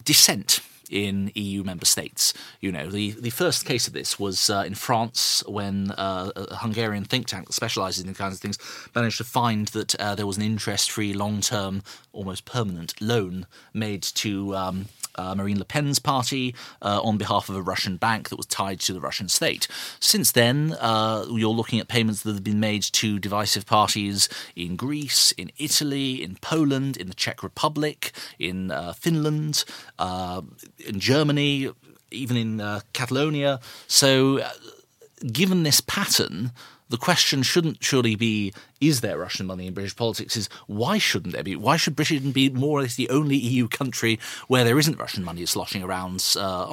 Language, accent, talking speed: English, British, 180 wpm